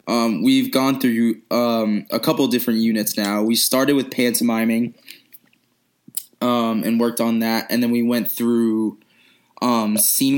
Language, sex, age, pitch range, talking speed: English, male, 20-39, 110-125 Hz, 150 wpm